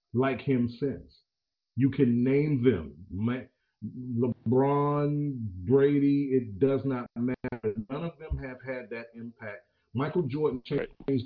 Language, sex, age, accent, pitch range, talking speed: English, male, 40-59, American, 115-140 Hz, 125 wpm